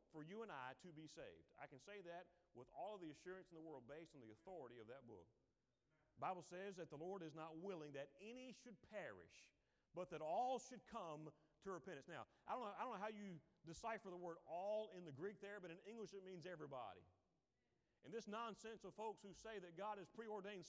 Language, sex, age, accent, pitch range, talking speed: English, male, 40-59, American, 170-220 Hz, 225 wpm